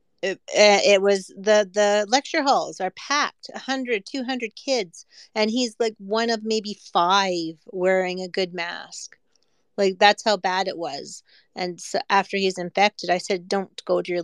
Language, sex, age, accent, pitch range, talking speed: English, female, 30-49, American, 180-215 Hz, 170 wpm